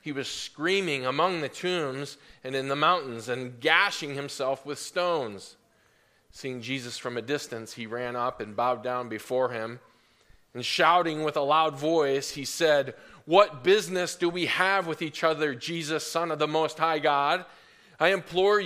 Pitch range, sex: 125-170 Hz, male